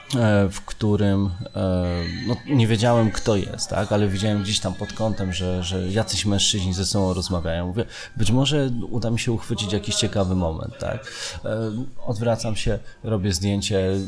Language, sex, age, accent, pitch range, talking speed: Polish, male, 20-39, native, 95-115 Hz, 155 wpm